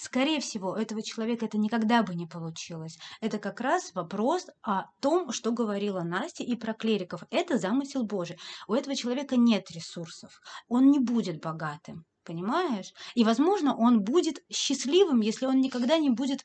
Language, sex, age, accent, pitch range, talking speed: Russian, female, 30-49, native, 195-250 Hz, 165 wpm